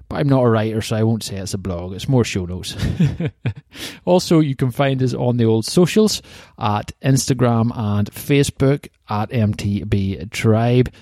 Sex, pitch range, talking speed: male, 105-135 Hz, 175 wpm